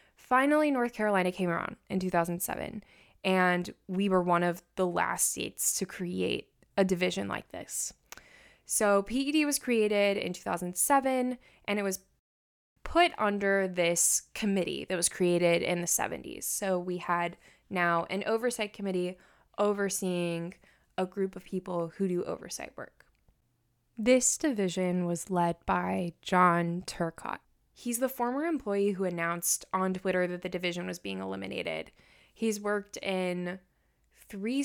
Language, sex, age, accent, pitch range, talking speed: English, female, 20-39, American, 175-220 Hz, 140 wpm